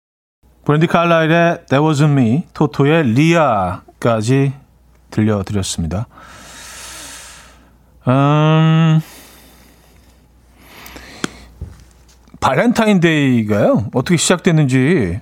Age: 40-59